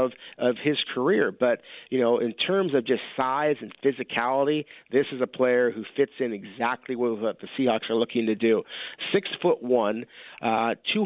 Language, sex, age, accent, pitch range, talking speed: English, male, 40-59, American, 120-155 Hz, 190 wpm